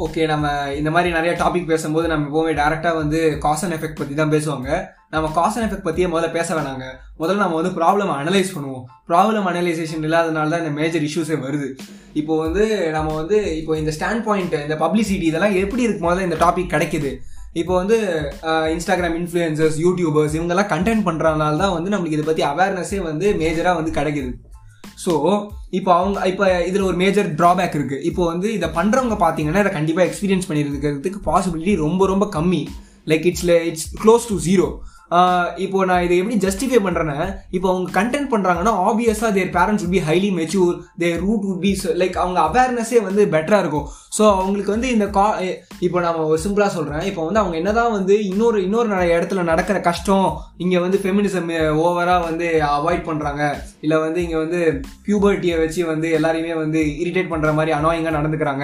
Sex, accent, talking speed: male, native, 175 wpm